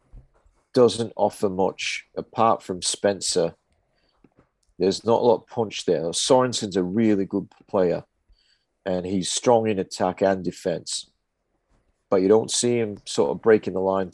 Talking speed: 150 wpm